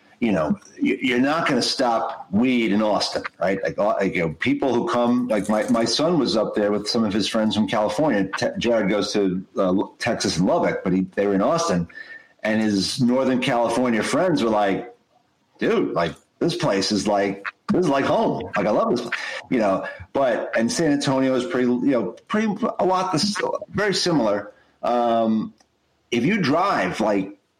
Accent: American